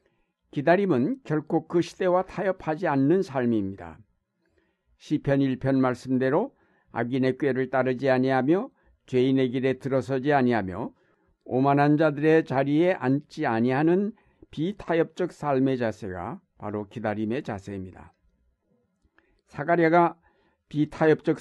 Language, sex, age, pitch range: Korean, male, 60-79, 125-155 Hz